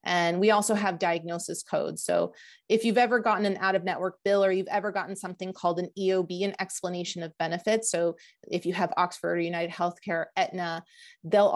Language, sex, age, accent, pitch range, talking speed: English, female, 30-49, American, 170-200 Hz, 185 wpm